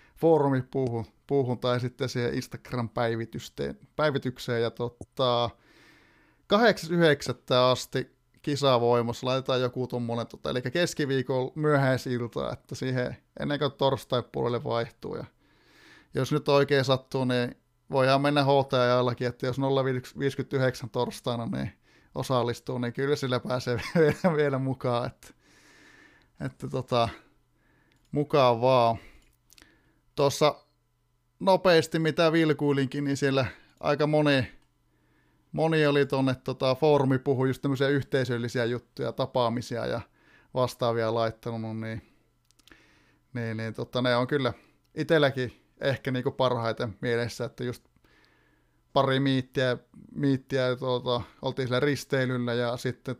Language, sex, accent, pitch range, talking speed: Finnish, male, native, 120-140 Hz, 105 wpm